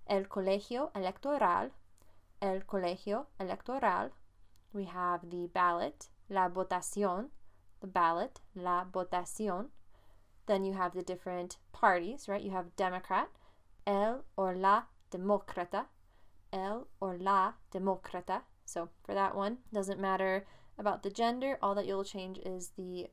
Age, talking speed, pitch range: 20-39, 125 wpm, 180-205 Hz